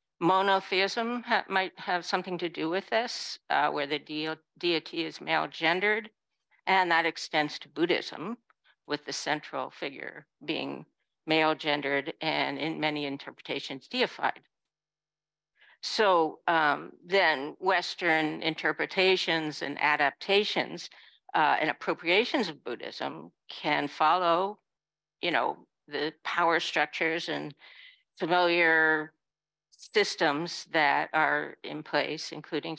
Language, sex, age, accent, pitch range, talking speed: English, female, 60-79, American, 155-205 Hz, 110 wpm